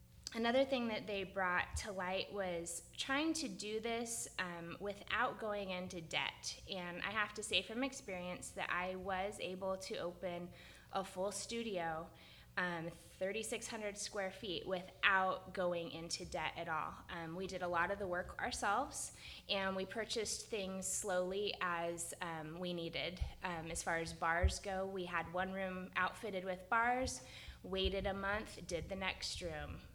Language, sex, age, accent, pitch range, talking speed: English, female, 20-39, American, 175-200 Hz, 160 wpm